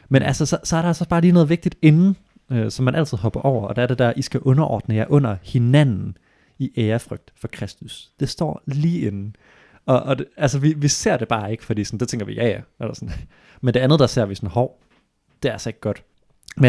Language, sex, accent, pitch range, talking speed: Danish, male, native, 110-145 Hz, 250 wpm